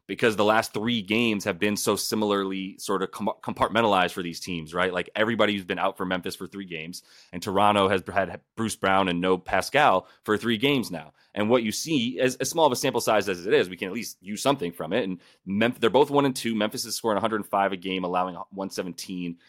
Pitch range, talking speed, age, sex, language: 95-115 Hz, 235 wpm, 30-49, male, English